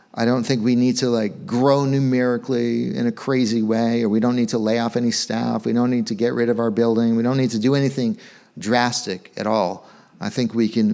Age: 40-59